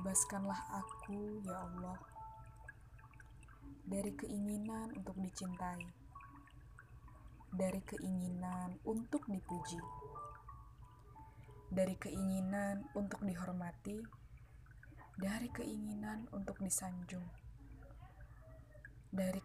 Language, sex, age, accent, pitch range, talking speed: Indonesian, female, 20-39, native, 130-200 Hz, 65 wpm